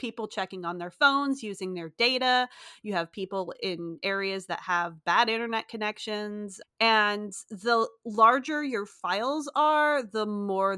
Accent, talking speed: American, 145 wpm